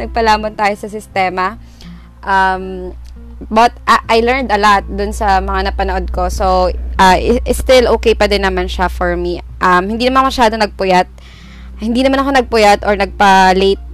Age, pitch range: 20-39, 180-235 Hz